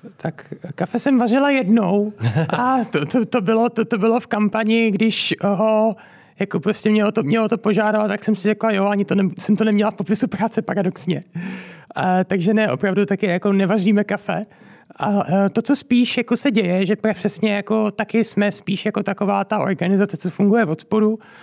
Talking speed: 200 wpm